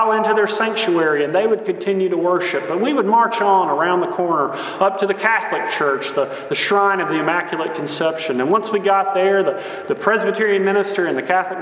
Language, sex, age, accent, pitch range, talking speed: English, male, 30-49, American, 145-200 Hz, 210 wpm